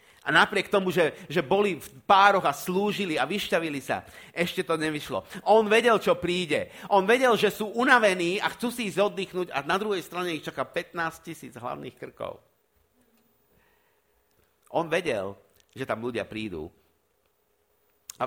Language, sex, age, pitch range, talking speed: Slovak, male, 50-69, 135-200 Hz, 150 wpm